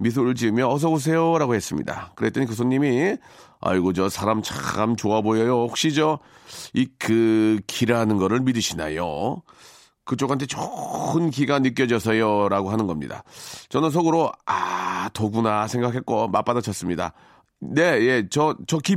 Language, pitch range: Korean, 95-140 Hz